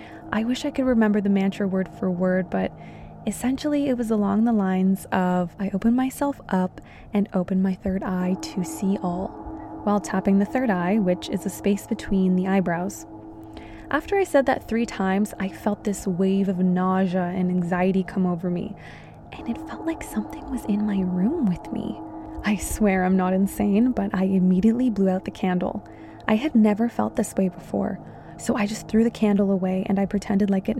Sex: female